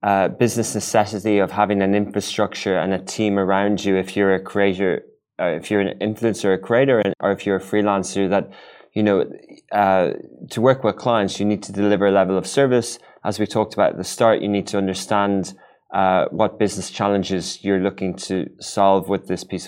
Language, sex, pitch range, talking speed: English, male, 95-110 Hz, 200 wpm